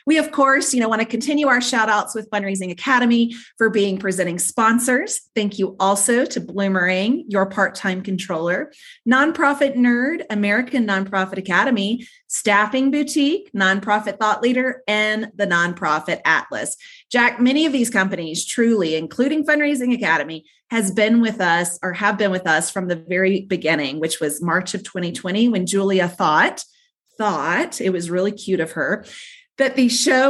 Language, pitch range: English, 180-250 Hz